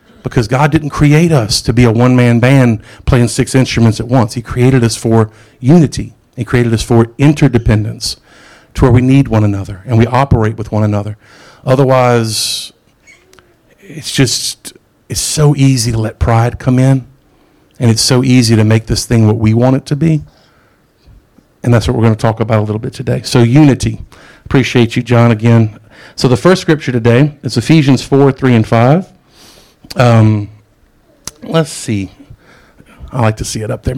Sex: male